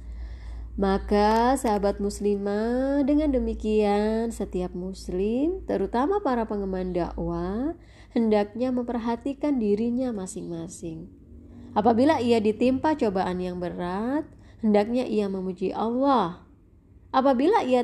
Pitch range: 180-250 Hz